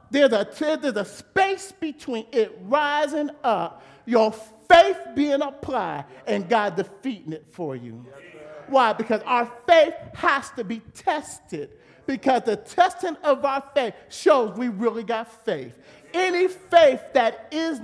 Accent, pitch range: American, 215-305 Hz